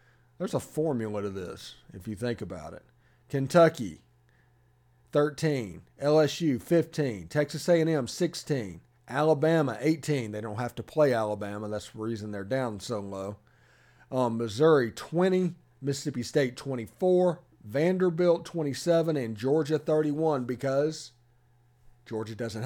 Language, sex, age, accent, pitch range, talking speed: English, male, 40-59, American, 120-155 Hz, 120 wpm